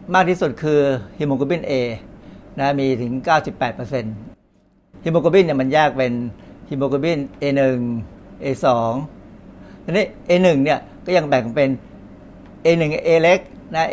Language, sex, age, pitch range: Thai, male, 60-79, 125-155 Hz